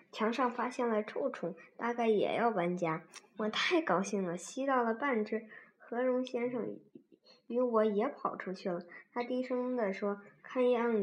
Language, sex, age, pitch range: Chinese, male, 20-39, 195-245 Hz